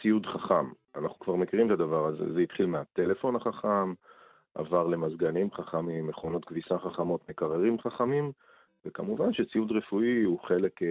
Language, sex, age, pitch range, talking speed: Hebrew, male, 40-59, 85-110 Hz, 140 wpm